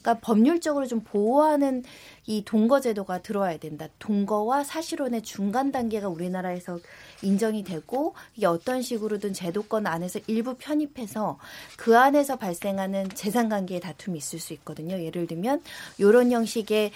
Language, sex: Korean, female